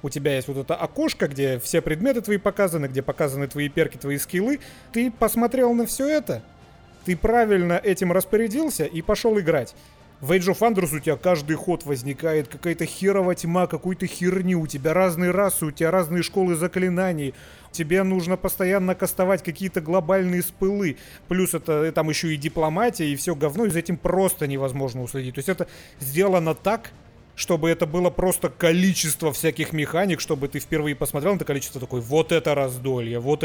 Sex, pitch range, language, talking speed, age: male, 155-195 Hz, Russian, 175 wpm, 30-49